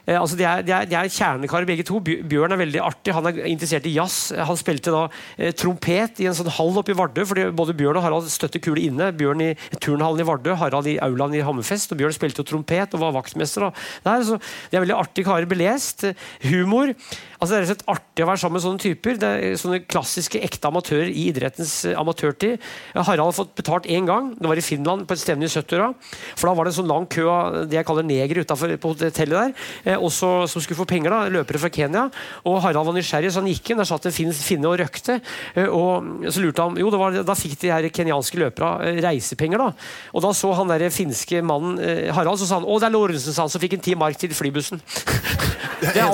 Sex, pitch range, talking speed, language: male, 155-190 Hz, 210 wpm, English